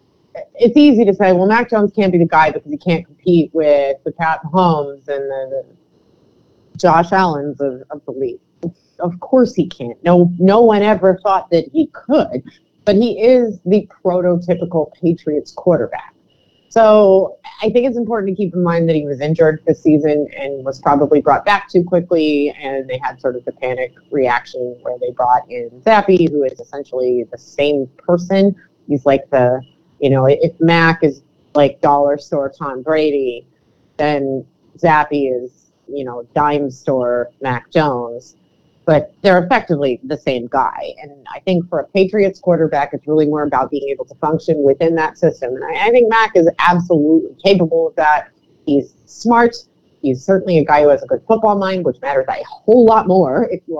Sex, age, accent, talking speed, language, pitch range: female, 30-49, American, 185 wpm, English, 145-190 Hz